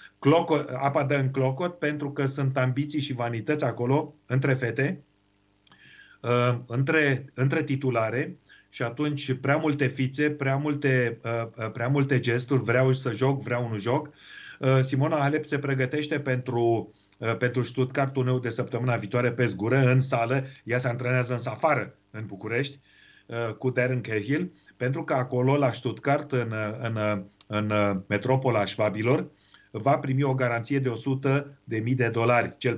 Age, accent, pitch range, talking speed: 40-59, native, 120-140 Hz, 140 wpm